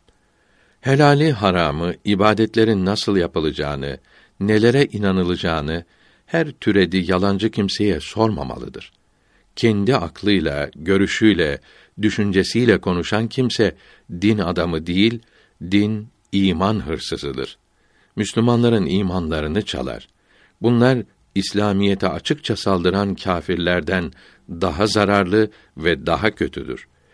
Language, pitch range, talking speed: Turkish, 85-105 Hz, 80 wpm